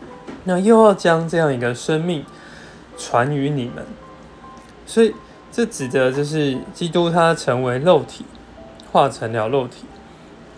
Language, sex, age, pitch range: Chinese, male, 20-39, 130-170 Hz